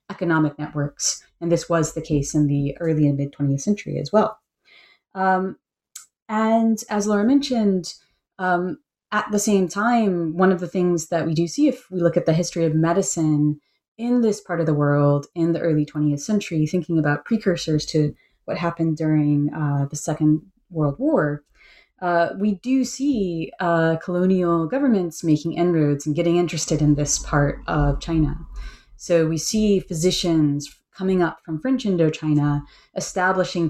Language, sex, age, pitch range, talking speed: English, female, 30-49, 150-180 Hz, 160 wpm